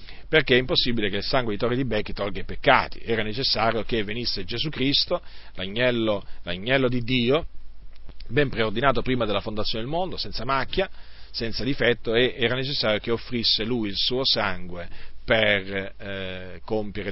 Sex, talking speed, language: male, 160 wpm, Italian